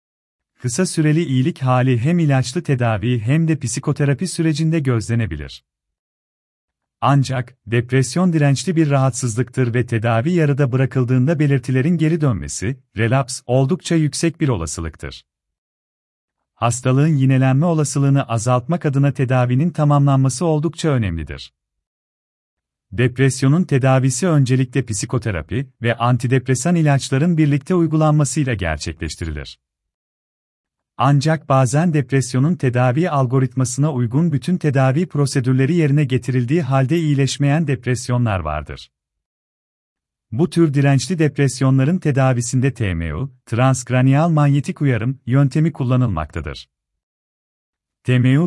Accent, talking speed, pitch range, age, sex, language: native, 95 wpm, 115-145 Hz, 40-59, male, Turkish